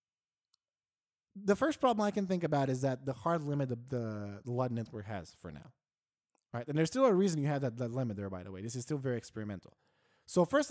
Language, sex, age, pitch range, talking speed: English, male, 20-39, 120-175 Hz, 235 wpm